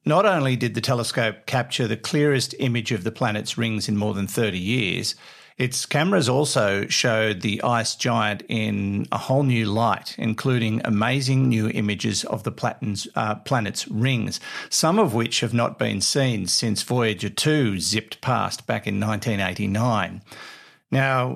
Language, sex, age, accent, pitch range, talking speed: English, male, 50-69, Australian, 105-130 Hz, 155 wpm